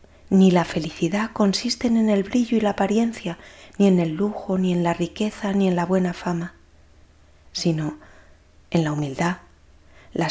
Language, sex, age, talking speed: Spanish, female, 30-49, 165 wpm